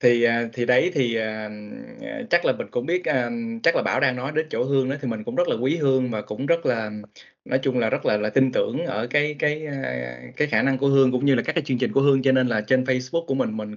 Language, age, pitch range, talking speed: Vietnamese, 20-39, 115-140 Hz, 280 wpm